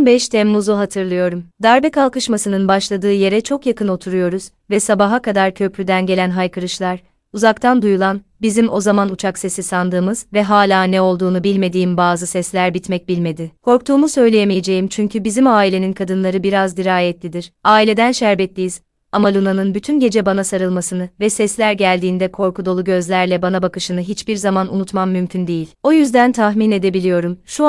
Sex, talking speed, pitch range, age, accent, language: female, 145 wpm, 185-220 Hz, 30-49, native, Turkish